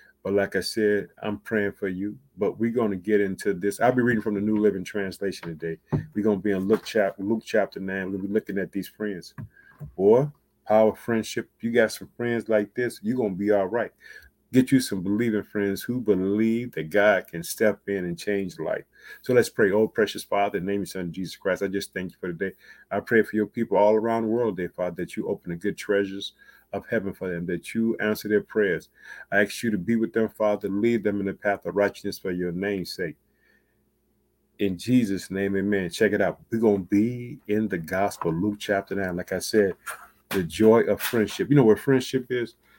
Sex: male